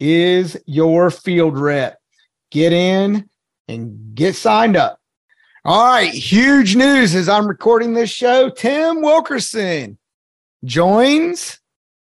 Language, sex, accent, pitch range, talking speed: English, male, American, 155-200 Hz, 110 wpm